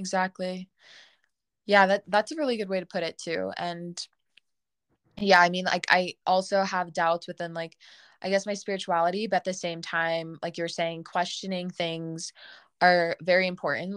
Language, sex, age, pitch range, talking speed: English, female, 20-39, 165-185 Hz, 170 wpm